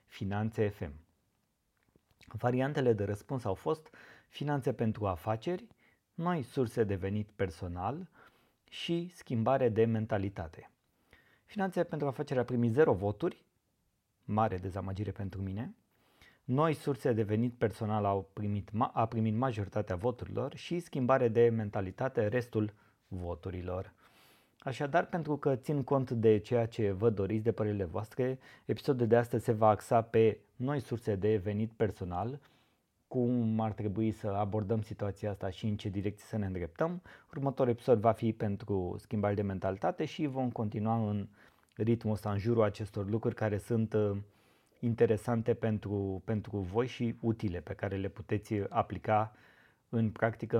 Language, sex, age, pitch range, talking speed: Romanian, male, 30-49, 100-120 Hz, 140 wpm